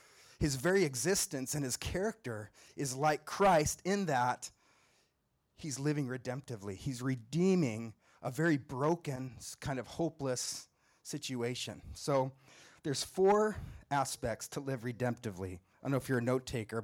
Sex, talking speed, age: male, 135 wpm, 30-49